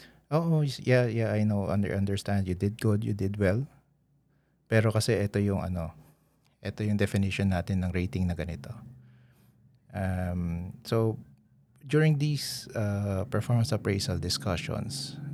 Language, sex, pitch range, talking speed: Filipino, male, 95-120 Hz, 115 wpm